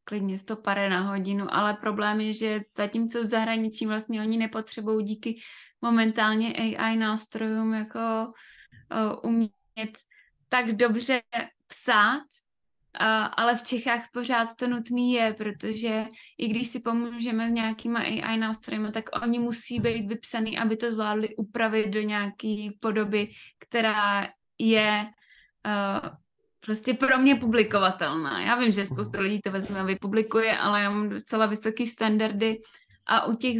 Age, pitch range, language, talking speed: 20-39, 215-230 Hz, Czech, 140 wpm